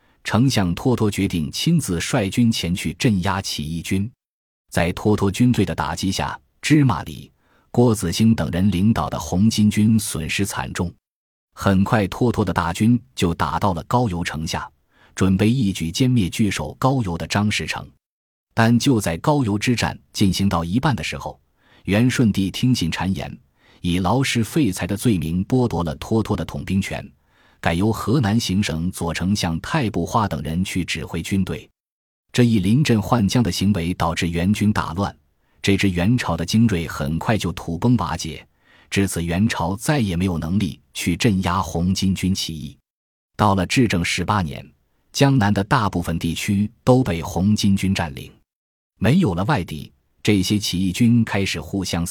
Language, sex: Chinese, male